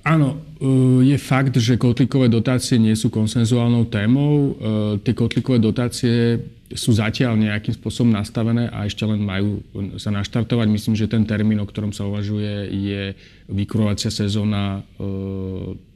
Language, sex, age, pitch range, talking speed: Slovak, male, 30-49, 105-120 Hz, 130 wpm